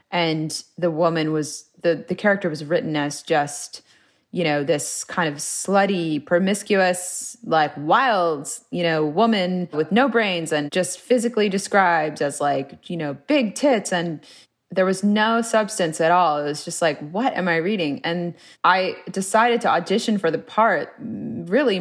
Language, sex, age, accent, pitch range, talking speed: English, female, 20-39, American, 160-205 Hz, 165 wpm